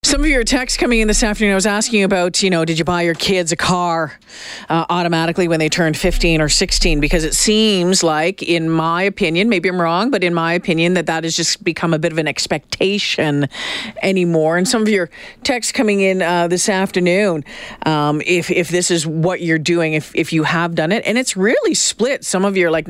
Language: English